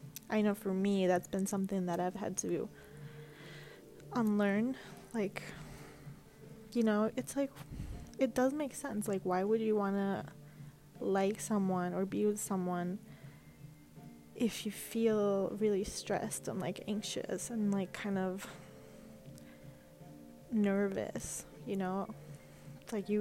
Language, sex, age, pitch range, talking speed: English, female, 20-39, 190-225 Hz, 130 wpm